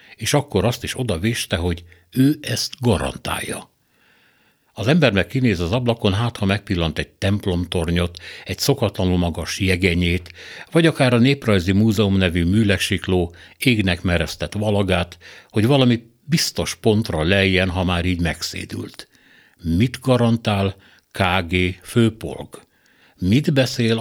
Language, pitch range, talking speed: Hungarian, 90-110 Hz, 120 wpm